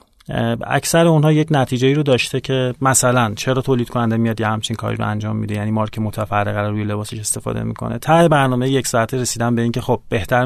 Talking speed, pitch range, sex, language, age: 200 wpm, 115-130 Hz, male, Persian, 30-49